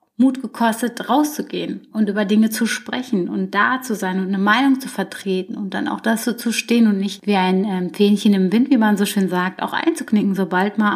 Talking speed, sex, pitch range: 215 wpm, female, 200-250 Hz